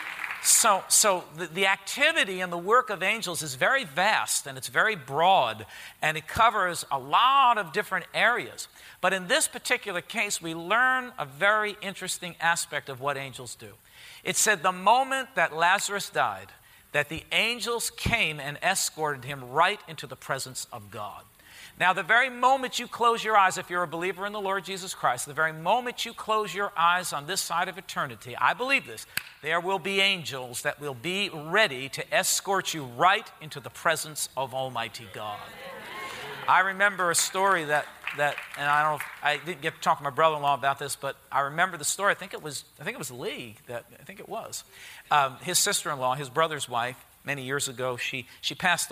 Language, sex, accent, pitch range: English, male, American, 140-195 Hz